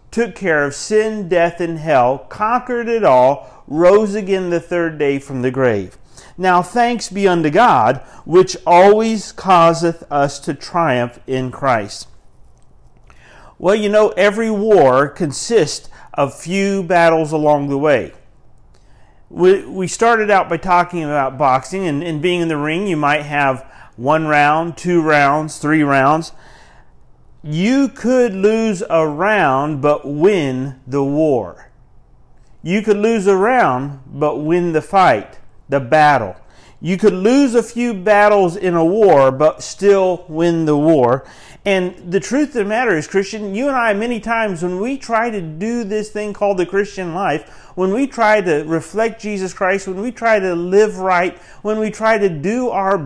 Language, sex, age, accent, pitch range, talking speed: English, male, 50-69, American, 150-210 Hz, 160 wpm